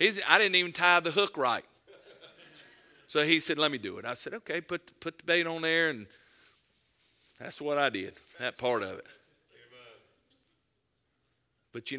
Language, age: English, 50-69